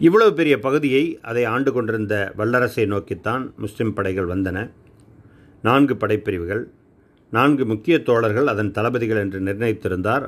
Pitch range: 100-135 Hz